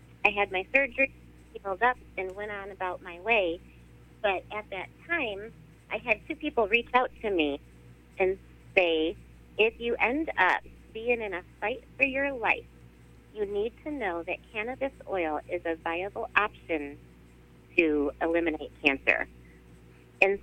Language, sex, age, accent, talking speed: English, female, 40-59, American, 155 wpm